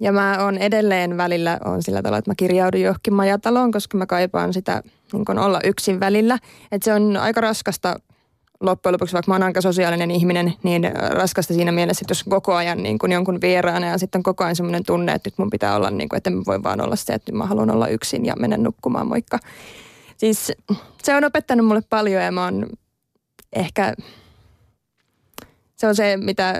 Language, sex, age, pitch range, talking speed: Finnish, female, 20-39, 175-205 Hz, 200 wpm